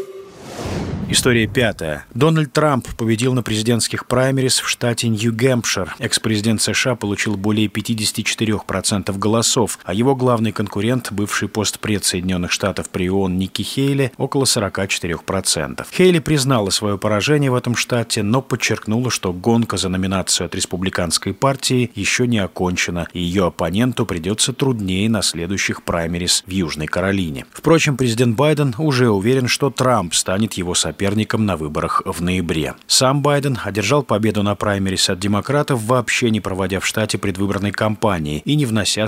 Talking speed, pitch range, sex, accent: 145 wpm, 95-120 Hz, male, native